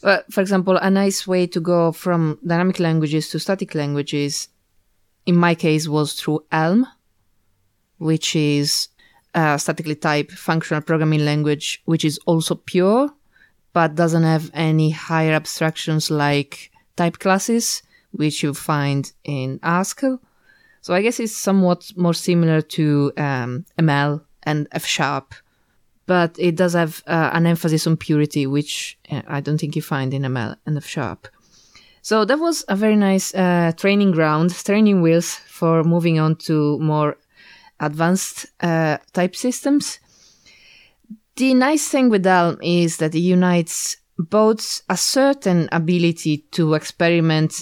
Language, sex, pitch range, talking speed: English, female, 150-185 Hz, 140 wpm